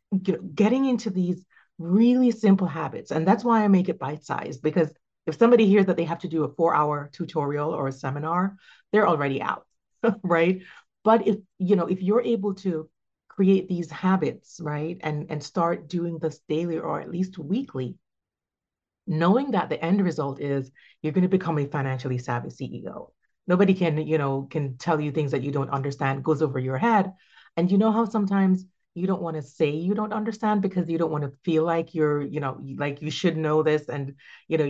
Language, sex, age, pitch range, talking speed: English, female, 30-49, 150-190 Hz, 200 wpm